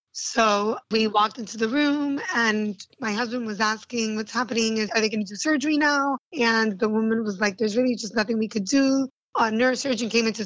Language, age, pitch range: English, 20-39, 210-240 Hz